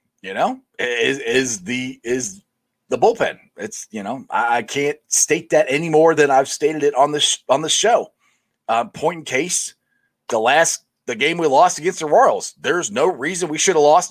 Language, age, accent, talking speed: English, 30-49, American, 200 wpm